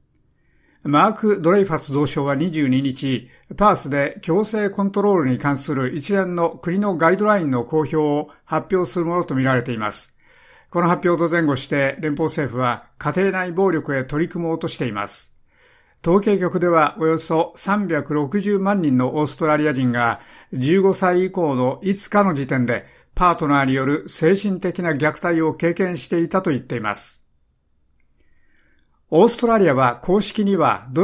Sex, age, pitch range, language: male, 60-79, 140-185 Hz, Japanese